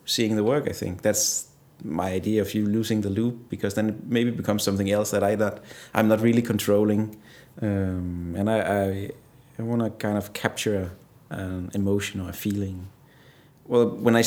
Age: 30-49